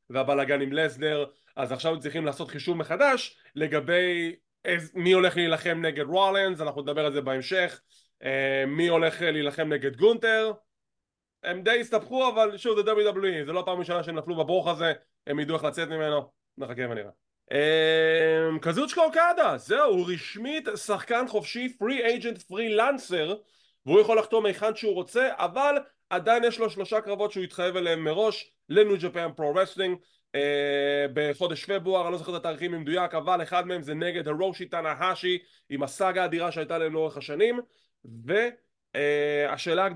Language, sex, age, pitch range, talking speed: English, male, 20-39, 160-220 Hz, 140 wpm